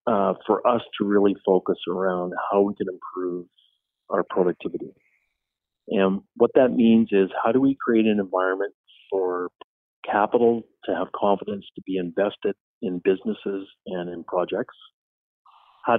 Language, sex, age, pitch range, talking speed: English, male, 50-69, 95-110 Hz, 145 wpm